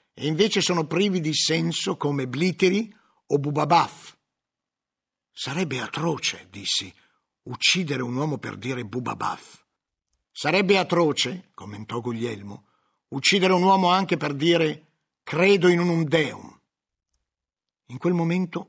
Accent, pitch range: native, 120-185 Hz